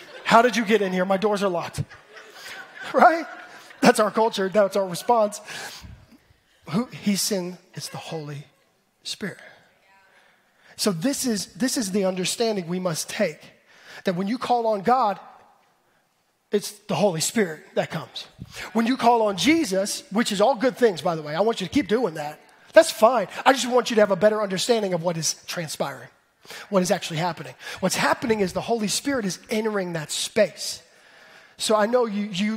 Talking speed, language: 180 wpm, English